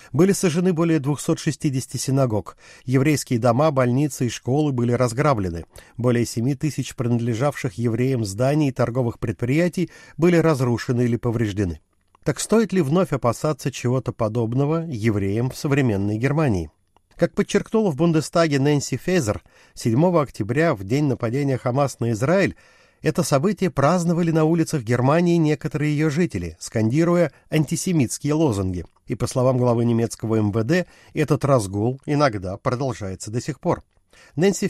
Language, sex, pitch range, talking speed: Russian, male, 115-160 Hz, 130 wpm